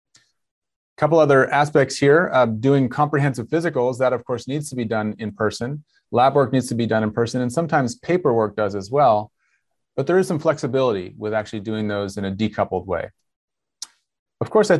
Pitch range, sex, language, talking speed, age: 110-140 Hz, male, English, 190 wpm, 30-49